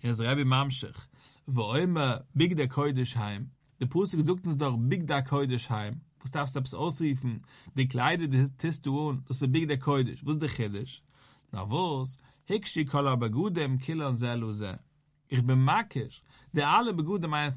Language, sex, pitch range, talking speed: English, male, 130-180 Hz, 180 wpm